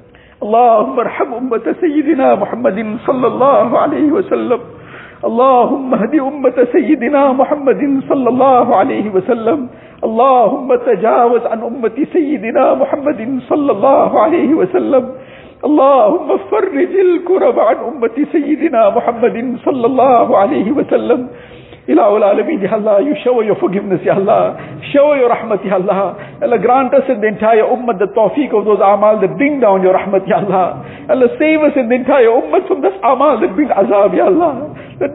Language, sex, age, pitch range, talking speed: English, male, 50-69, 240-335 Hz, 145 wpm